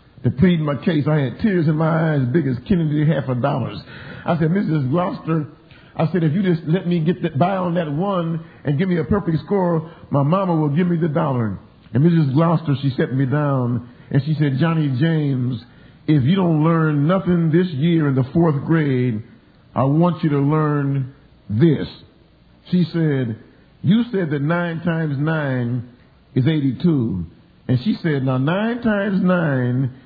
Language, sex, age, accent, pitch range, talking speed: English, male, 50-69, American, 135-175 Hz, 185 wpm